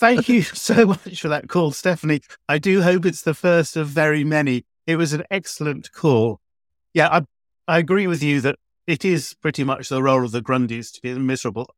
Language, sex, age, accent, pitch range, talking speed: English, male, 50-69, British, 125-155 Hz, 210 wpm